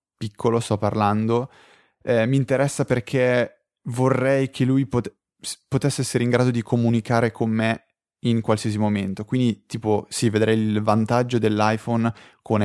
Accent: native